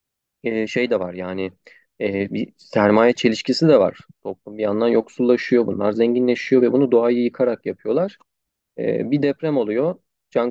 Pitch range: 110-135 Hz